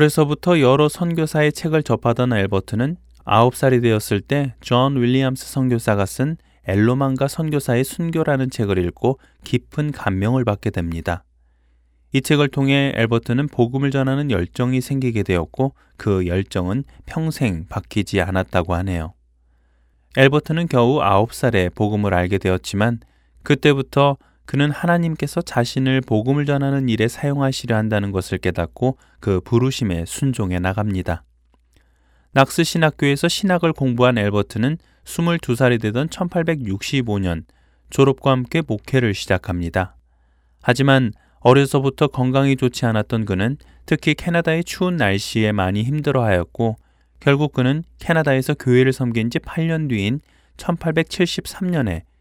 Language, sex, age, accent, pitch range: Korean, male, 20-39, native, 95-140 Hz